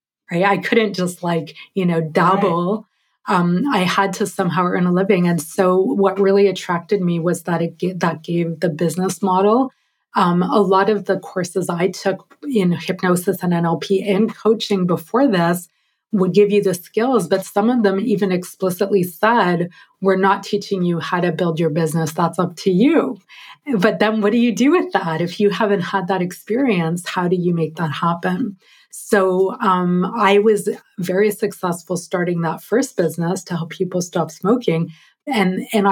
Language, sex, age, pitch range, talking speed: English, female, 30-49, 175-205 Hz, 180 wpm